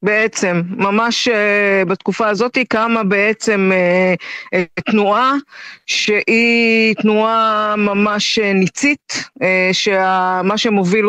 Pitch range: 195-230 Hz